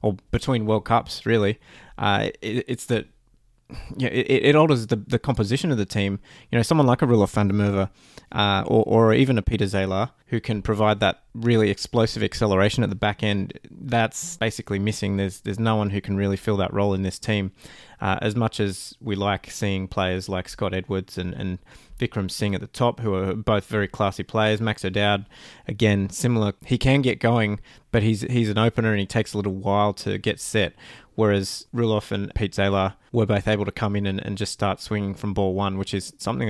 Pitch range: 100-115 Hz